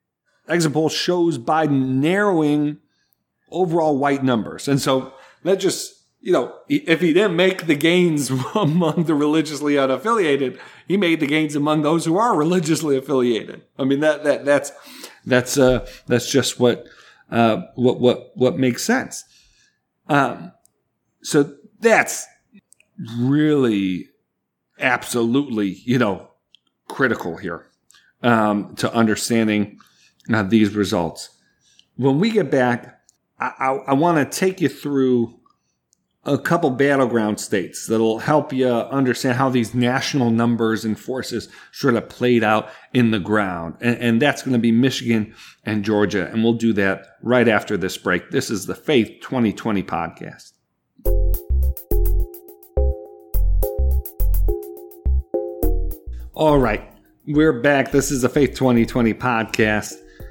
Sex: male